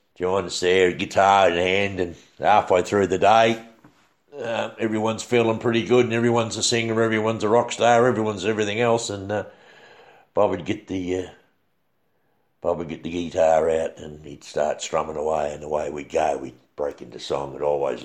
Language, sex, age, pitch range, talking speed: English, male, 60-79, 90-115 Hz, 185 wpm